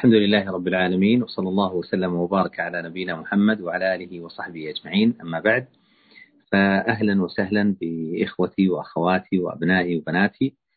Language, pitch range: Arabic, 90-110 Hz